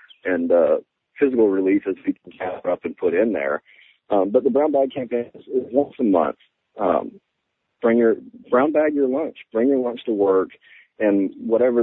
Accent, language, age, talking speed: American, English, 40-59, 190 wpm